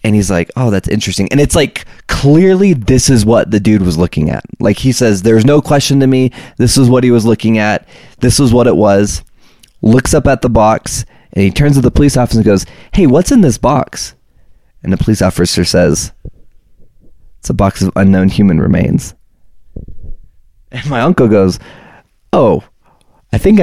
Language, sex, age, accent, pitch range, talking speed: English, male, 20-39, American, 95-130 Hz, 195 wpm